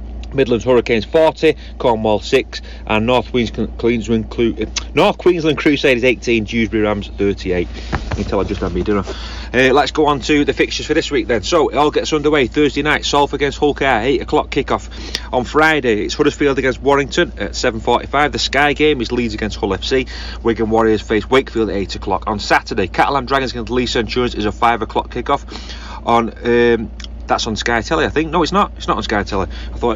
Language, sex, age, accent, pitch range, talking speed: English, male, 30-49, British, 110-145 Hz, 200 wpm